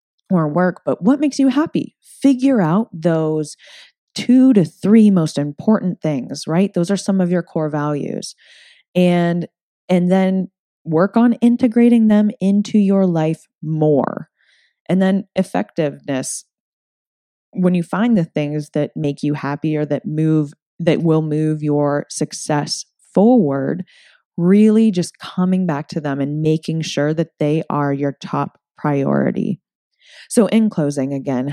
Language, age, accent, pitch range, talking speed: English, 20-39, American, 145-195 Hz, 140 wpm